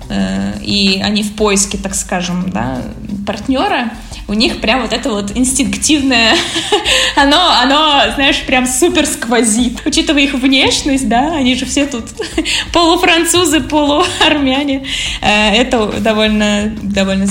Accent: native